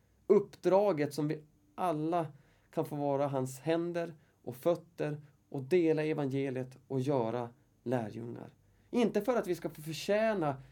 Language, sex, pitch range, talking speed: Swedish, male, 120-160 Hz, 135 wpm